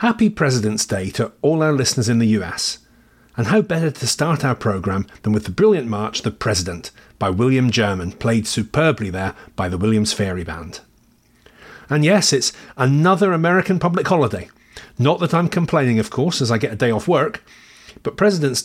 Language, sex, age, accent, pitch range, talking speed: English, male, 40-59, British, 110-165 Hz, 185 wpm